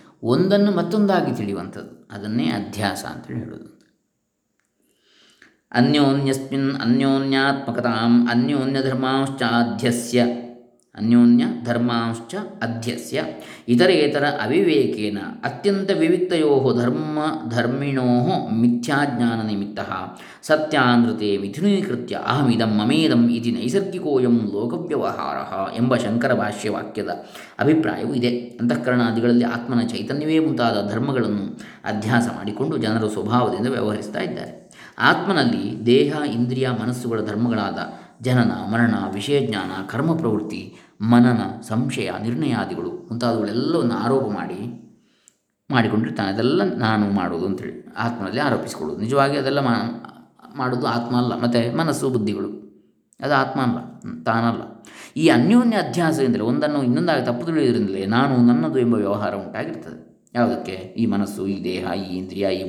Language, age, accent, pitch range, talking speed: Kannada, 20-39, native, 110-135 Hz, 95 wpm